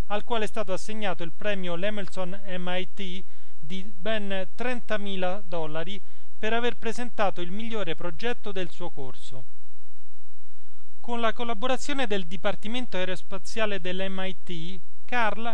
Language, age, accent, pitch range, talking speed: Italian, 30-49, native, 170-215 Hz, 110 wpm